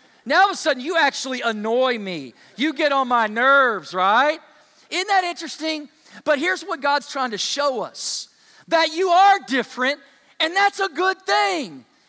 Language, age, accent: English, 40-59, American